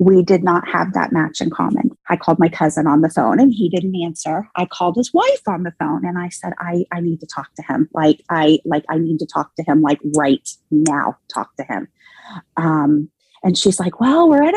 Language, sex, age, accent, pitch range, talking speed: English, female, 30-49, American, 170-245 Hz, 240 wpm